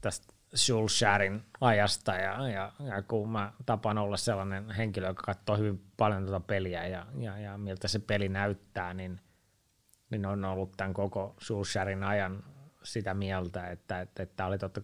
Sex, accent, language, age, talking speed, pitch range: male, native, Finnish, 30-49, 160 wpm, 95-115 Hz